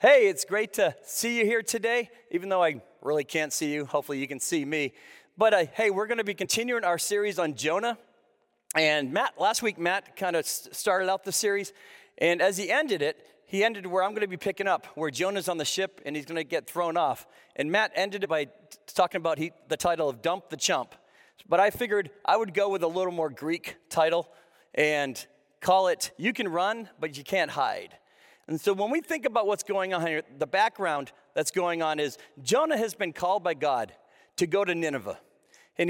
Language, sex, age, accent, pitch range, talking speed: English, male, 40-59, American, 160-215 Hz, 220 wpm